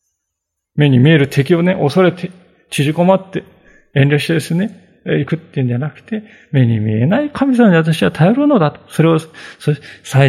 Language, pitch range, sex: Japanese, 130-195 Hz, male